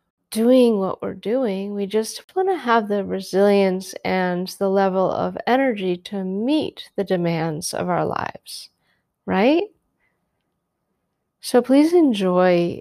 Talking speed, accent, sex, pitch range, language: 125 wpm, American, female, 185-245 Hz, English